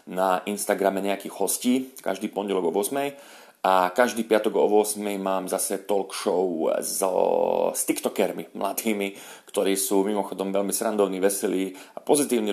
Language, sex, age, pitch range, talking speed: Slovak, male, 40-59, 105-130 Hz, 140 wpm